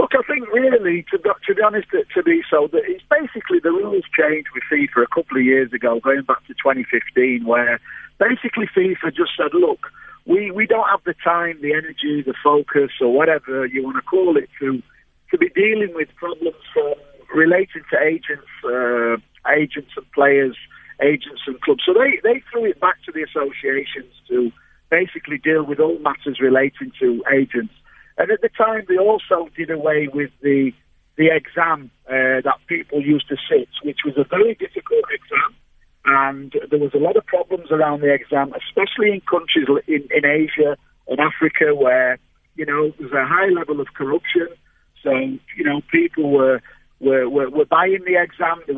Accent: British